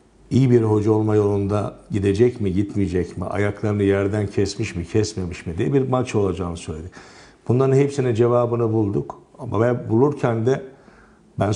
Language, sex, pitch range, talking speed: Turkish, male, 95-120 Hz, 150 wpm